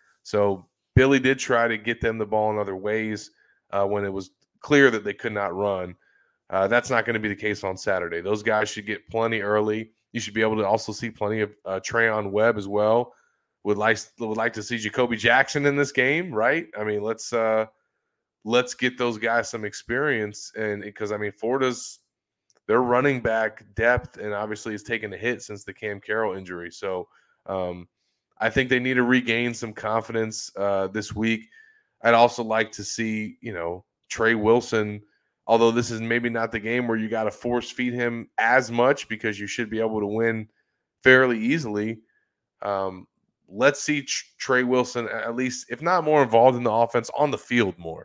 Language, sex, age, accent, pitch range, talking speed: English, male, 20-39, American, 105-120 Hz, 200 wpm